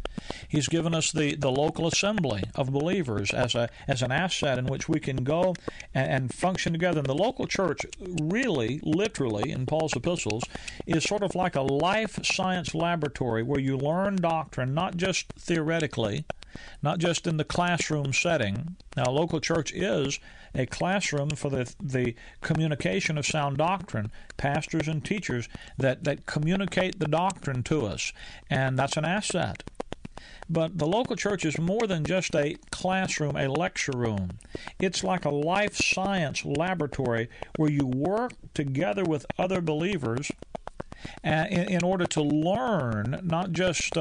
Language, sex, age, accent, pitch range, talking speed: English, male, 50-69, American, 140-180 Hz, 155 wpm